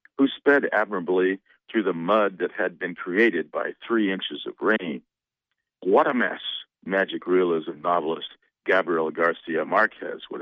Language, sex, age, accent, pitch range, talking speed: English, male, 50-69, American, 100-140 Hz, 145 wpm